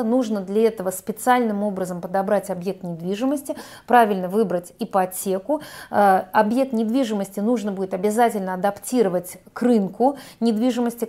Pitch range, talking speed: 195-240 Hz, 110 wpm